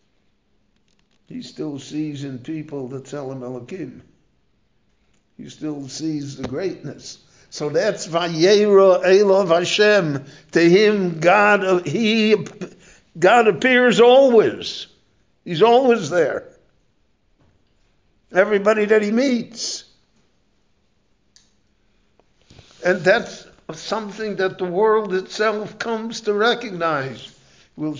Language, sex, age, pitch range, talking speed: English, male, 60-79, 155-215 Hz, 90 wpm